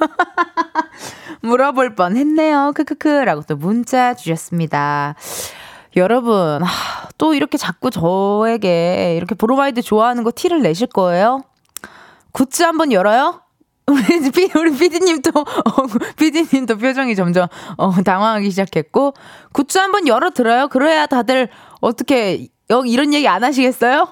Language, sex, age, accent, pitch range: Korean, female, 20-39, native, 195-315 Hz